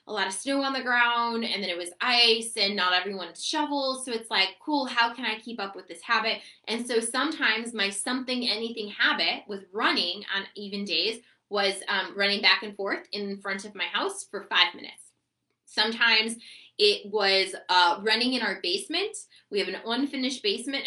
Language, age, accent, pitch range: English, 20-39, American, 200-260 Hz